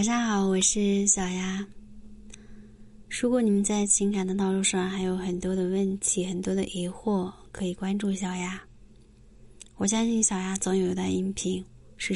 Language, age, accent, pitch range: Chinese, 20-39, native, 185-210 Hz